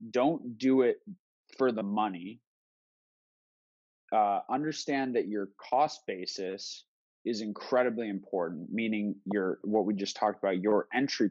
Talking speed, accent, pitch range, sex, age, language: 125 wpm, American, 95-115 Hz, male, 20-39, English